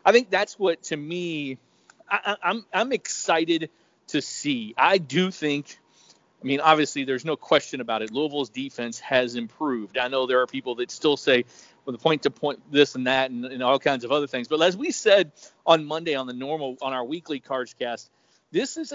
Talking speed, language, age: 205 wpm, English, 40-59